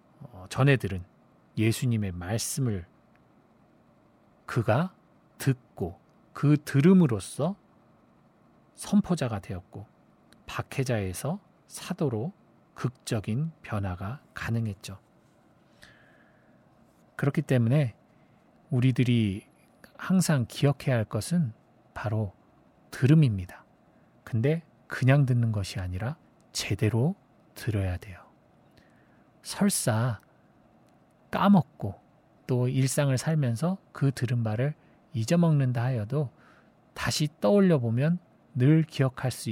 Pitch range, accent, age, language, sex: 110-150 Hz, native, 40-59, Korean, male